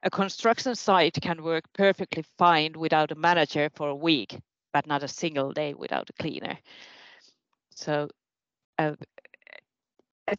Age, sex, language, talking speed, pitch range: 30-49, female, Finnish, 140 wpm, 160-190 Hz